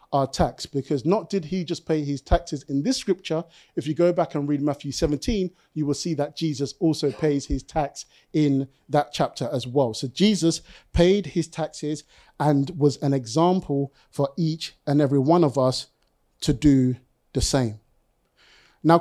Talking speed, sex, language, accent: 175 wpm, male, English, British